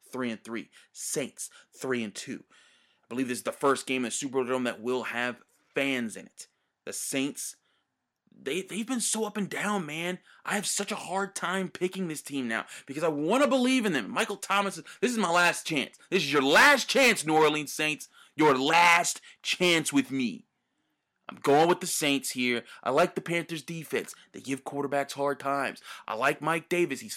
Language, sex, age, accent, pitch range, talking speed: English, male, 30-49, American, 130-185 Hz, 200 wpm